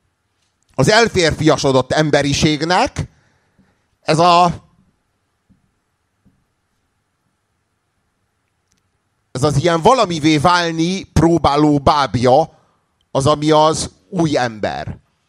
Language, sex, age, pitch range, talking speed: Hungarian, male, 30-49, 95-140 Hz, 65 wpm